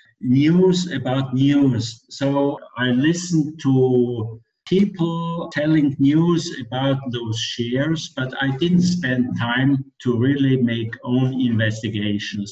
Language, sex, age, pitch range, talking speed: English, male, 60-79, 115-140 Hz, 110 wpm